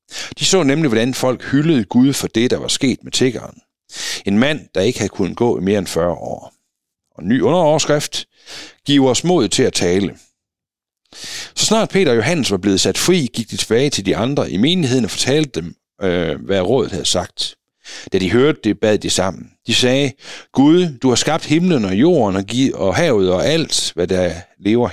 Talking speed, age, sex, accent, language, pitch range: 200 wpm, 60-79, male, native, Danish, 105-145 Hz